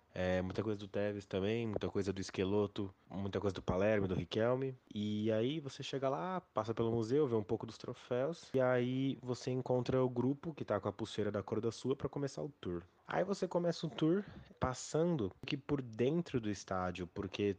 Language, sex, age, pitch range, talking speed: Portuguese, male, 20-39, 100-130 Hz, 200 wpm